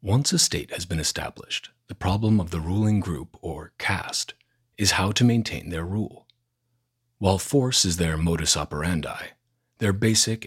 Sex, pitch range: male, 85-120 Hz